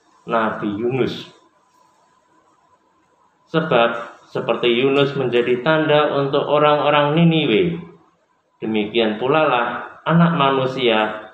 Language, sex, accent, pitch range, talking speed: Indonesian, male, native, 115-150 Hz, 75 wpm